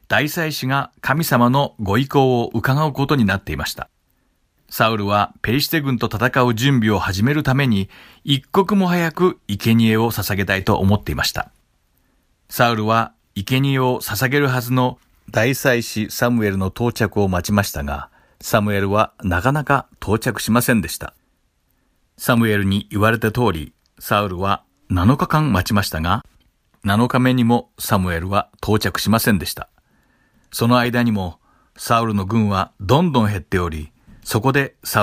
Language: Japanese